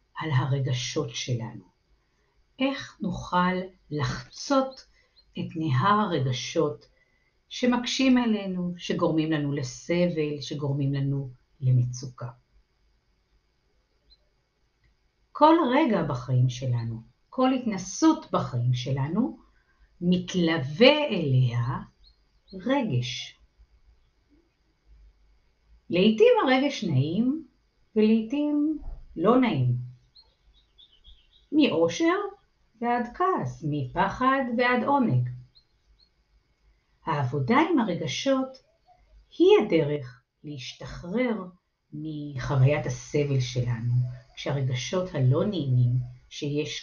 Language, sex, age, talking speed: Hebrew, female, 50-69, 70 wpm